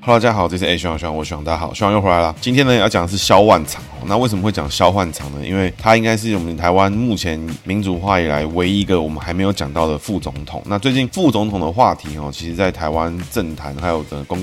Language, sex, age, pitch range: Chinese, male, 20-39, 80-105 Hz